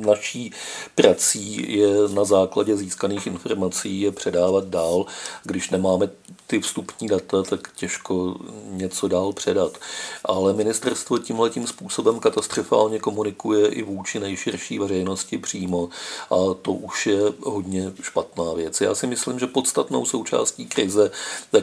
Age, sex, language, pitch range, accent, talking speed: 50-69, male, Czech, 95-105 Hz, native, 130 wpm